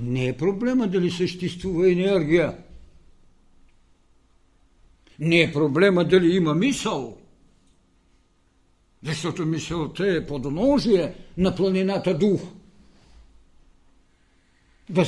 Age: 60-79